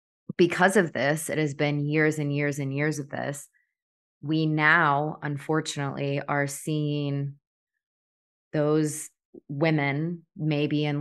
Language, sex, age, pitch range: English, female, 20-39, 140-160 Hz